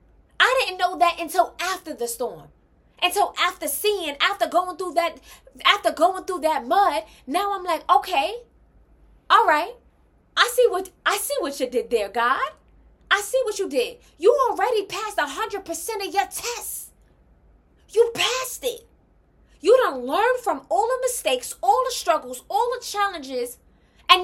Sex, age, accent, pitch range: female, 20-39, American, 315-425 Hz